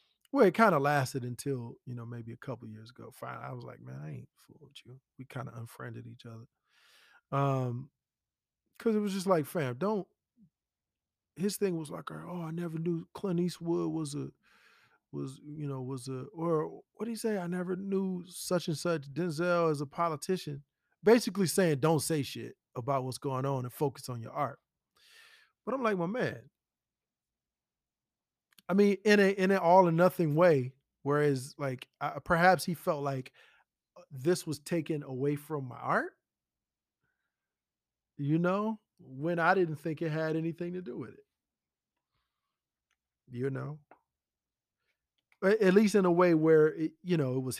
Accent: American